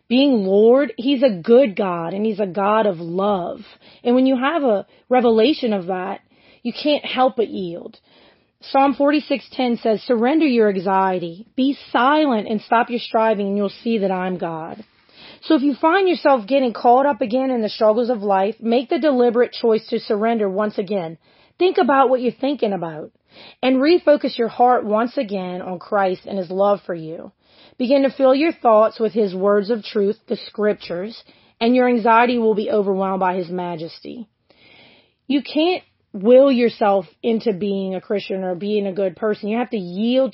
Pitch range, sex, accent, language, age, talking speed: 200-255 Hz, female, American, English, 30-49, 180 wpm